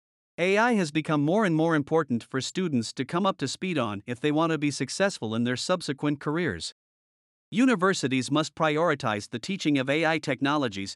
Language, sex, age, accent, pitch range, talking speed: English, male, 50-69, American, 130-170 Hz, 180 wpm